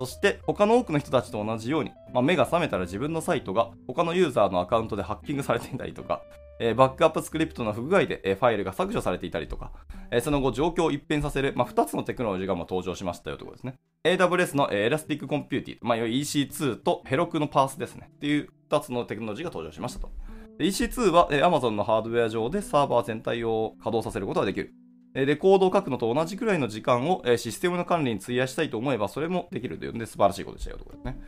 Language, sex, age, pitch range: Japanese, male, 20-39, 115-170 Hz